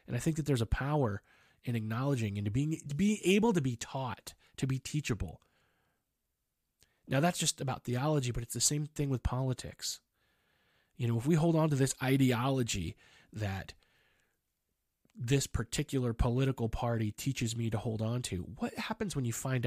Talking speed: 170 wpm